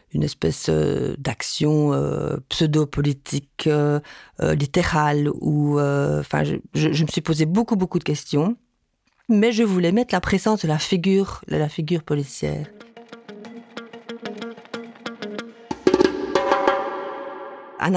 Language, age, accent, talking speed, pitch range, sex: French, 40-59, French, 120 wpm, 150-205 Hz, female